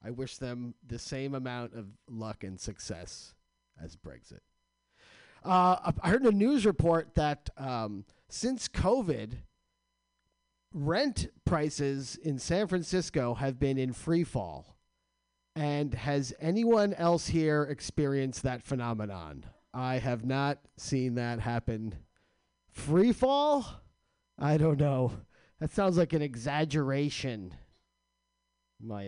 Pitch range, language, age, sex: 95-160 Hz, English, 40-59, male